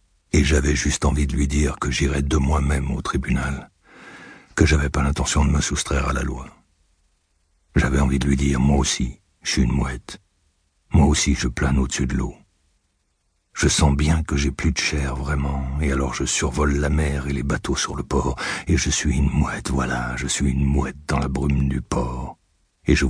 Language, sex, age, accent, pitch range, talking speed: French, male, 60-79, French, 65-75 Hz, 205 wpm